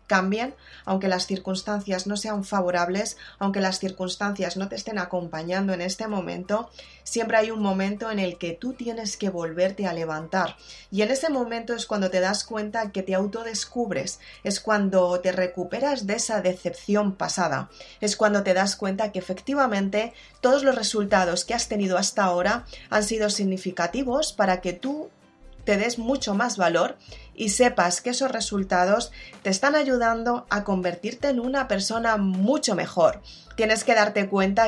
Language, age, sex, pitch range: Spanish, 30-49, female, 185-230 Hz